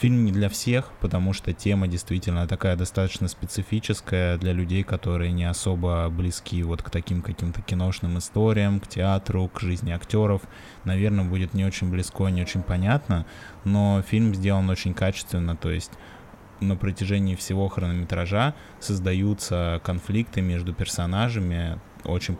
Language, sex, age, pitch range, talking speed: Russian, male, 20-39, 90-100 Hz, 140 wpm